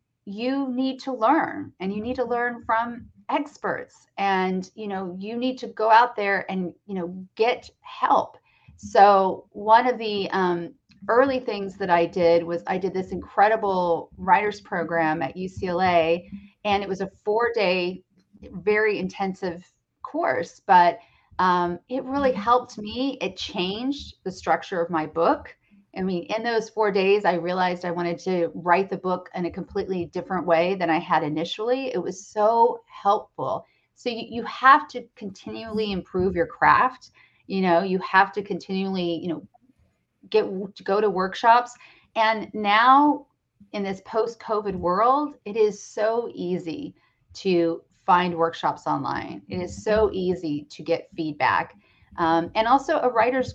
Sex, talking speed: female, 155 wpm